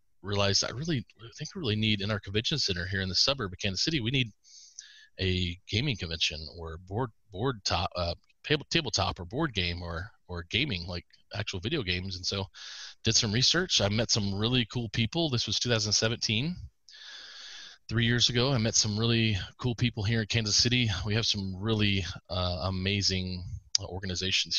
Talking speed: 185 wpm